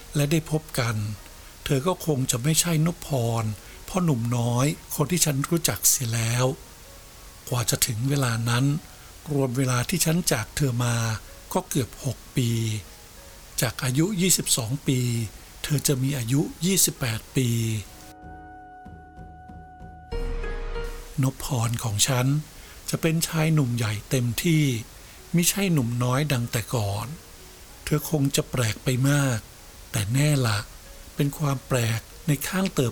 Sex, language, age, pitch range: male, Thai, 60-79, 110-145 Hz